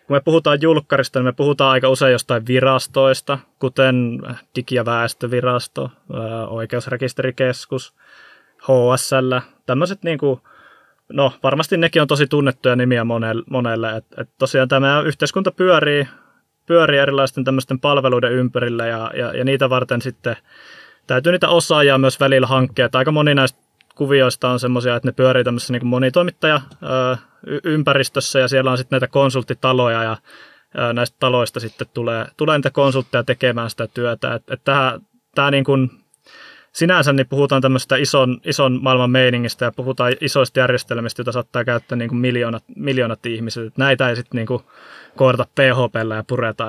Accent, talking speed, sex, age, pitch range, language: native, 150 wpm, male, 20-39, 125-140 Hz, Finnish